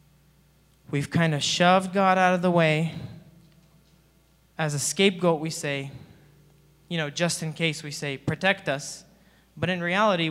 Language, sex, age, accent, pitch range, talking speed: English, male, 20-39, American, 140-170 Hz, 150 wpm